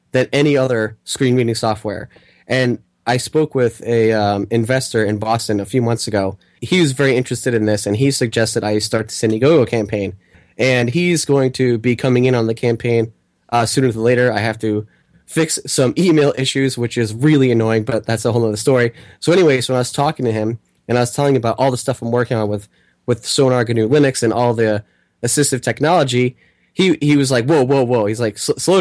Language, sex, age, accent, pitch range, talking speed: English, male, 20-39, American, 115-140 Hz, 220 wpm